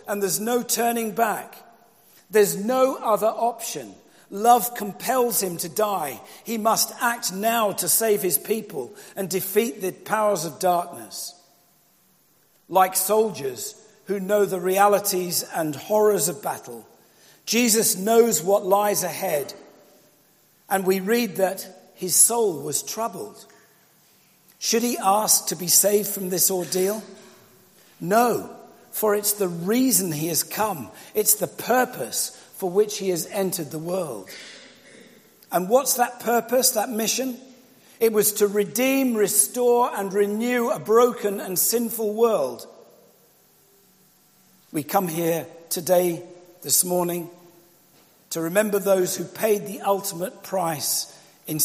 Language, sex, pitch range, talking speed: English, male, 185-225 Hz, 130 wpm